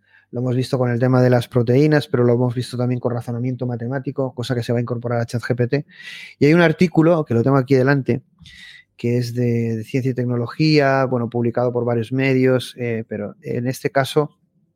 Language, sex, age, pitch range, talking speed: Spanish, male, 30-49, 120-150 Hz, 205 wpm